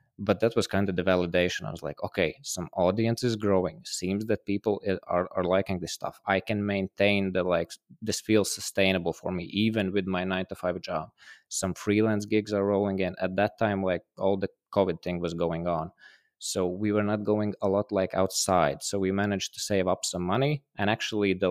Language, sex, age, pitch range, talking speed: Polish, male, 20-39, 90-105 Hz, 215 wpm